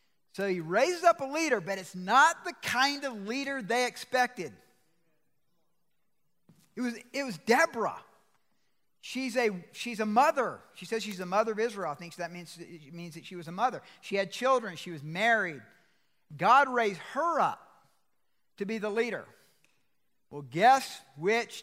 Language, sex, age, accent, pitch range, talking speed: English, male, 50-69, American, 170-235 Hz, 170 wpm